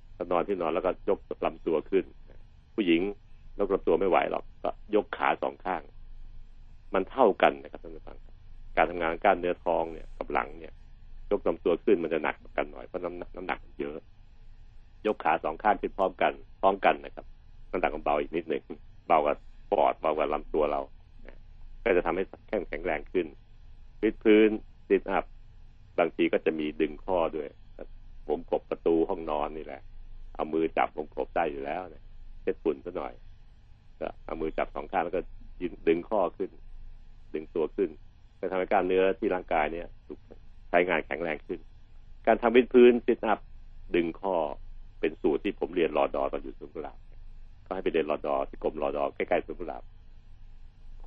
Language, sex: Thai, male